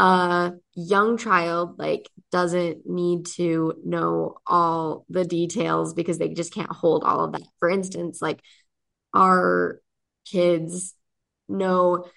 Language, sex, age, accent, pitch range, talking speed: English, female, 20-39, American, 160-190 Hz, 125 wpm